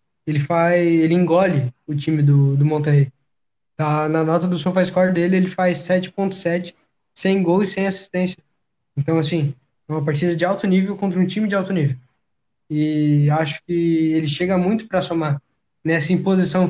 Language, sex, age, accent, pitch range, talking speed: Portuguese, male, 10-29, Brazilian, 160-185 Hz, 170 wpm